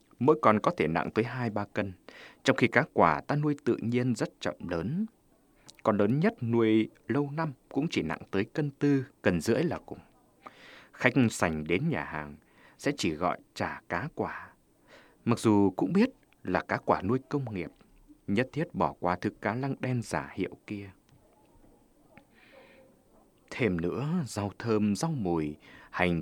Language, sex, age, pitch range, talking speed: Vietnamese, male, 20-39, 95-145 Hz, 170 wpm